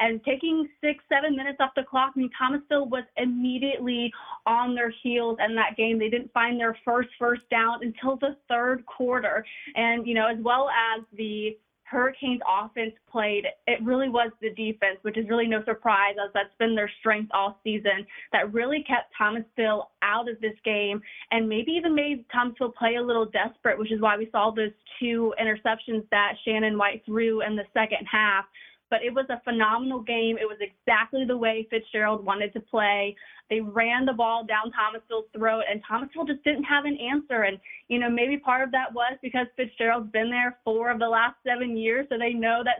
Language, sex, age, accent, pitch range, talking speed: English, female, 20-39, American, 215-250 Hz, 200 wpm